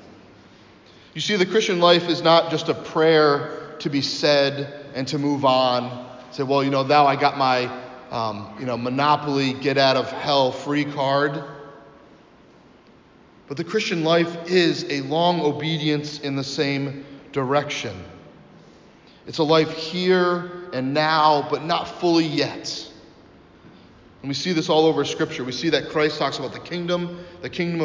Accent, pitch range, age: American, 145-170 Hz, 30-49